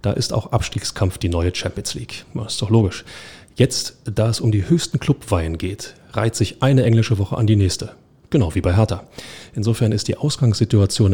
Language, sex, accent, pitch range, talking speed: German, male, German, 95-115 Hz, 195 wpm